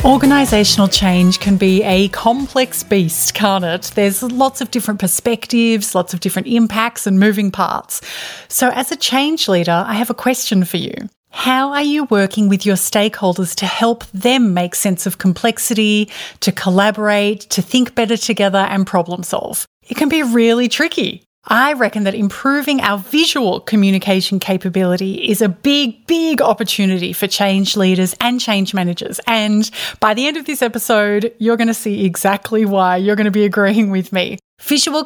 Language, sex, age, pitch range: English, female, 30-49, 195-245 Hz